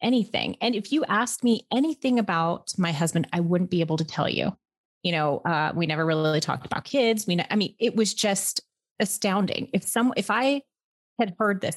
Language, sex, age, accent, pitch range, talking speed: English, female, 30-49, American, 165-220 Hz, 200 wpm